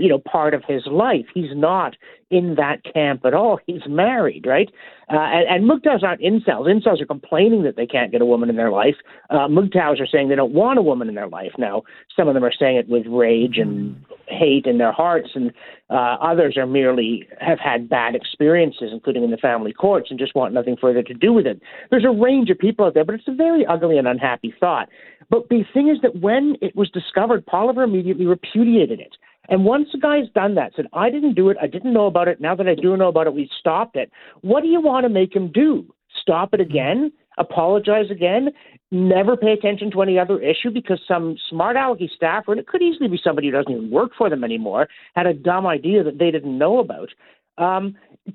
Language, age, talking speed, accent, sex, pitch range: English, 50-69, 230 wpm, American, male, 150-225 Hz